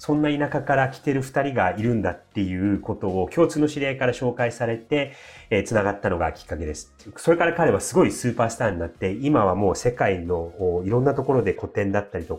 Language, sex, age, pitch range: Japanese, male, 30-49, 95-135 Hz